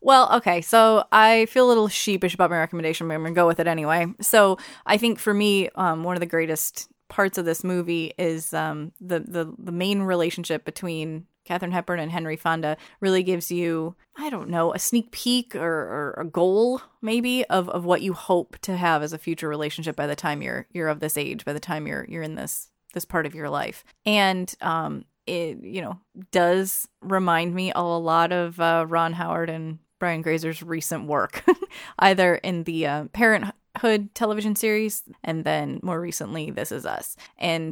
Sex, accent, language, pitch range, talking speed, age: female, American, English, 160-195 Hz, 200 wpm, 20-39